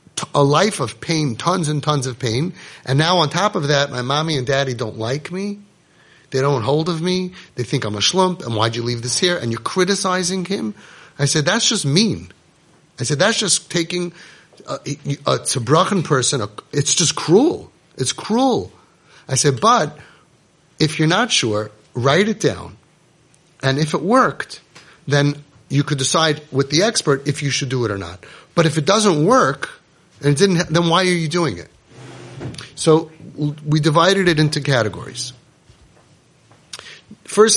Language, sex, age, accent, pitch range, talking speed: English, male, 30-49, American, 135-170 Hz, 180 wpm